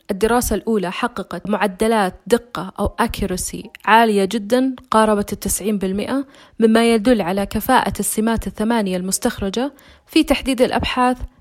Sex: female